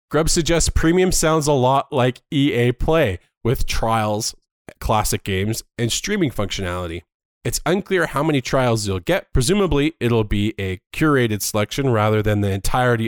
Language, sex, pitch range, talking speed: English, male, 105-145 Hz, 150 wpm